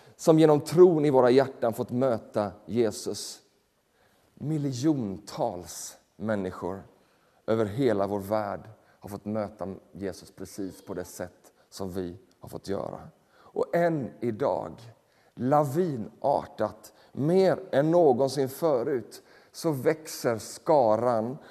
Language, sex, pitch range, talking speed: Swedish, male, 125-195 Hz, 110 wpm